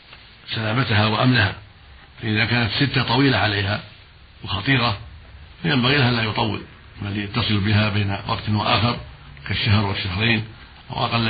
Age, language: 60-79, Arabic